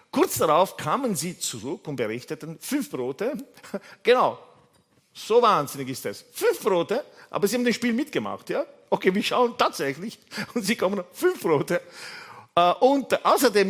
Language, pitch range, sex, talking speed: German, 120-200 Hz, male, 150 wpm